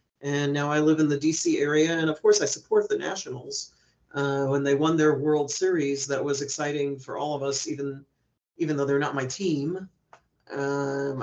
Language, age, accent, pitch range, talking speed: English, 40-59, American, 140-160 Hz, 200 wpm